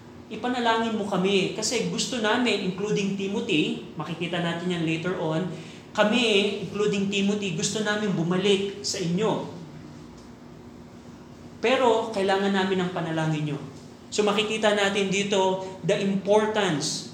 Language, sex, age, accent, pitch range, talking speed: Filipino, male, 20-39, native, 180-210 Hz, 115 wpm